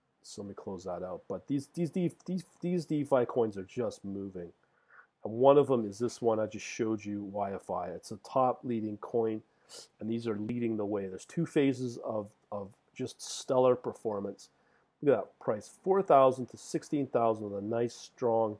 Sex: male